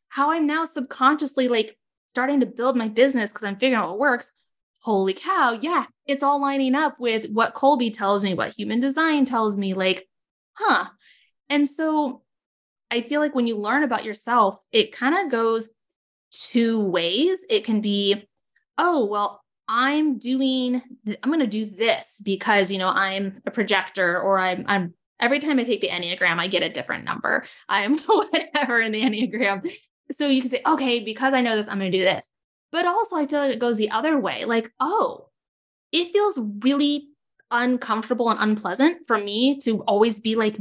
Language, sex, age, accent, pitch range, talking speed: English, female, 10-29, American, 210-280 Hz, 190 wpm